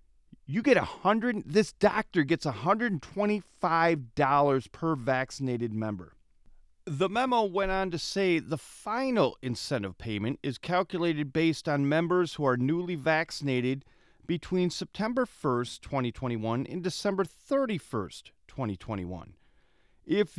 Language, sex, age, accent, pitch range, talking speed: English, male, 40-59, American, 120-185 Hz, 115 wpm